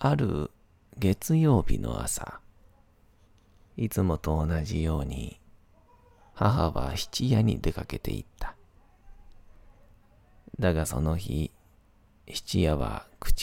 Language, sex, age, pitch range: Japanese, male, 40-59, 85-105 Hz